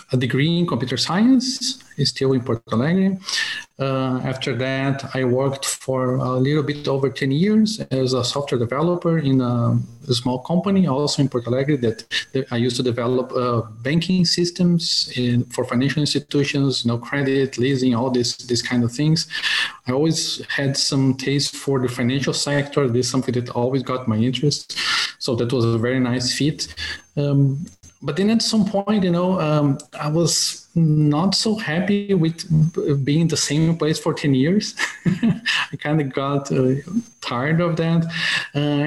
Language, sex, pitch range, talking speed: English, male, 130-170 Hz, 170 wpm